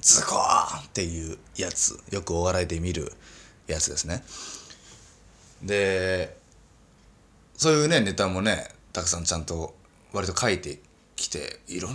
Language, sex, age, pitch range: Japanese, male, 20-39, 80-125 Hz